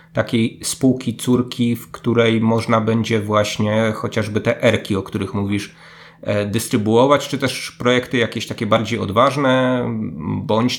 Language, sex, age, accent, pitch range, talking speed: Polish, male, 30-49, native, 105-125 Hz, 130 wpm